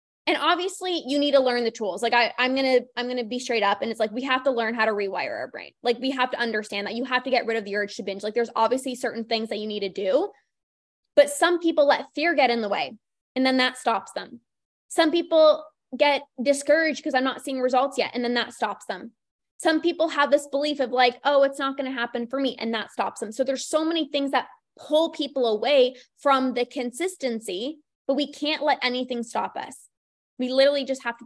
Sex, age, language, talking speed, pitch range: female, 20-39, English, 240 wpm, 230-280 Hz